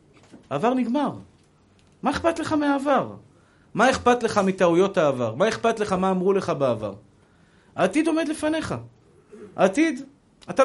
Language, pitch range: Hebrew, 155-215 Hz